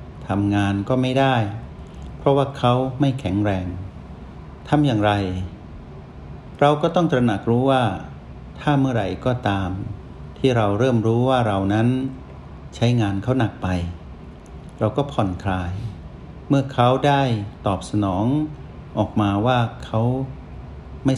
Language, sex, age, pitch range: Thai, male, 60-79, 95-130 Hz